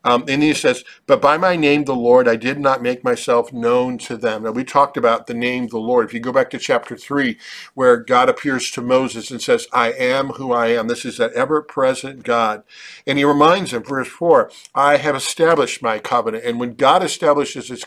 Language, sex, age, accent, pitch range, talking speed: English, male, 50-69, American, 120-150 Hz, 225 wpm